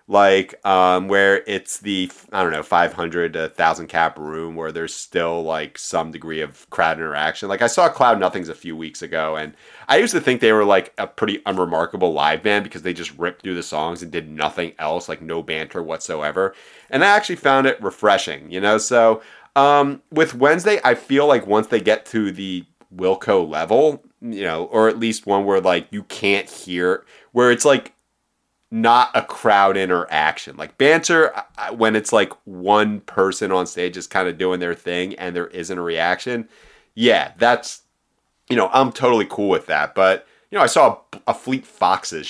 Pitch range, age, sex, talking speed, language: 90-115 Hz, 30-49, male, 195 wpm, English